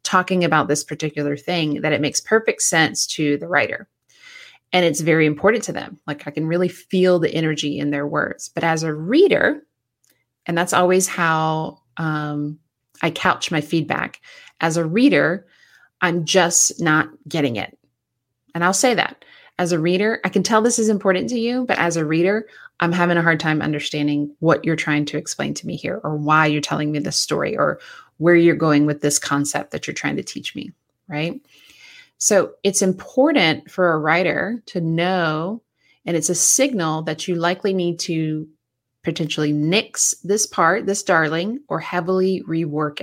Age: 30-49